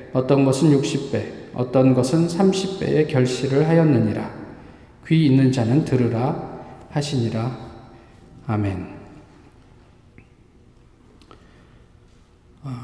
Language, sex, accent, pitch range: Korean, male, native, 120-155 Hz